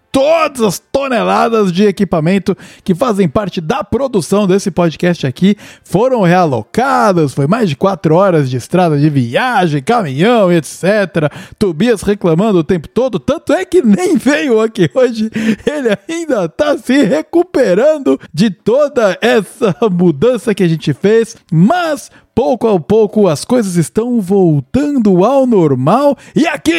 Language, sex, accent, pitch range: Portuguese, male, Brazilian, 175-240 Hz